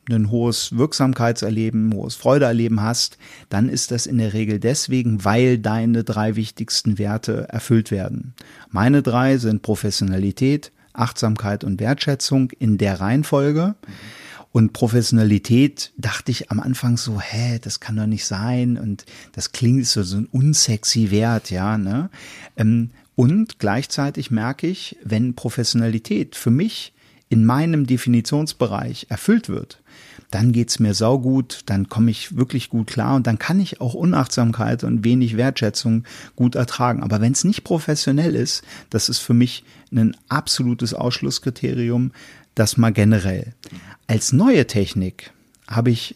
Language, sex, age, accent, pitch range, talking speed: German, male, 40-59, German, 110-130 Hz, 145 wpm